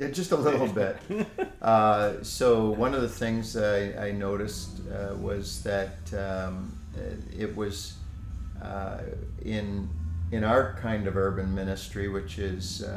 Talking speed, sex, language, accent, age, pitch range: 135 wpm, male, English, American, 50-69, 95-105 Hz